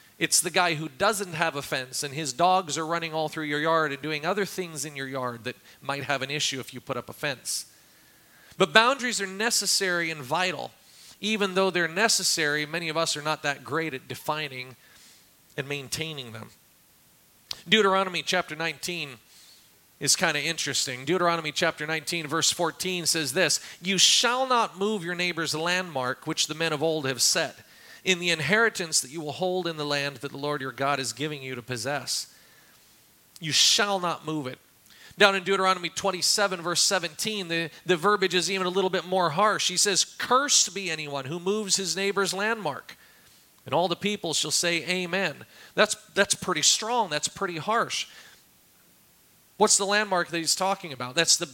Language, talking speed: English, 185 wpm